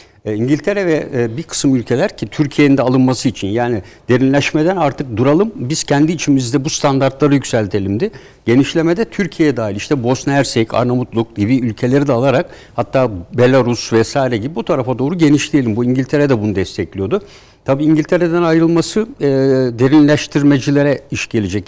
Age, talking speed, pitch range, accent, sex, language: 60-79, 150 wpm, 120-155 Hz, native, male, Turkish